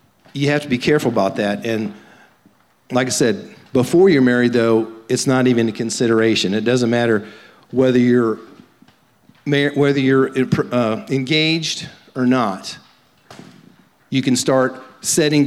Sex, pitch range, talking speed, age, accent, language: male, 115-135 Hz, 135 wpm, 50-69, American, English